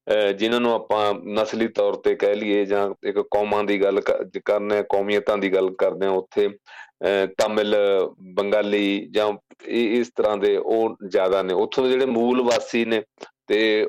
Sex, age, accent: male, 40-59, Indian